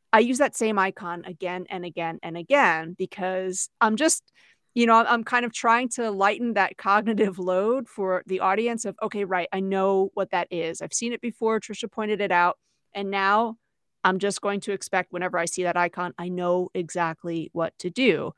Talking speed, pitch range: 200 wpm, 180-230 Hz